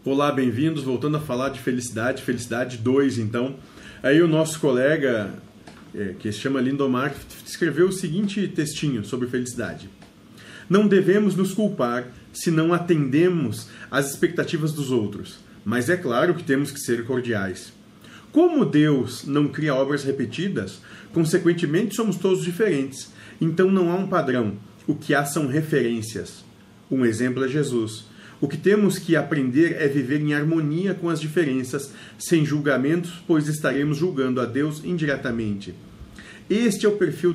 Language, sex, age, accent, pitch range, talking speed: Portuguese, male, 40-59, Brazilian, 130-175 Hz, 145 wpm